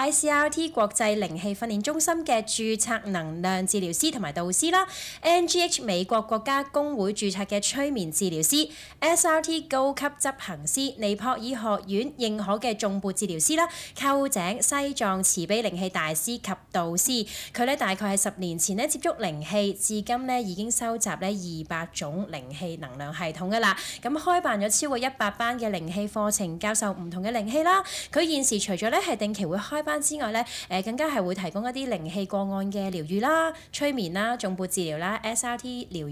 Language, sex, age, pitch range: Chinese, female, 20-39, 185-260 Hz